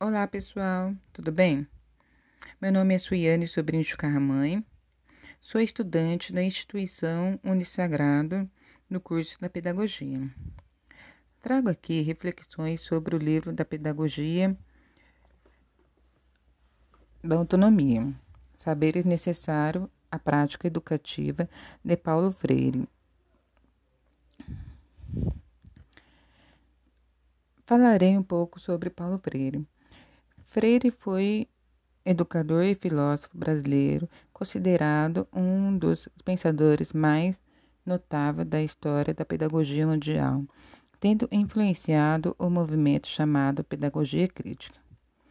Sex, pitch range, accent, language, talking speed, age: female, 145-185 Hz, Brazilian, Portuguese, 90 wpm, 40-59